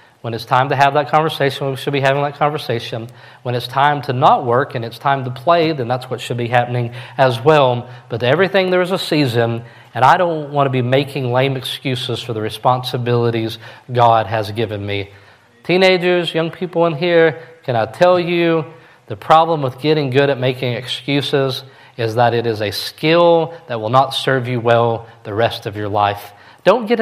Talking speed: 200 wpm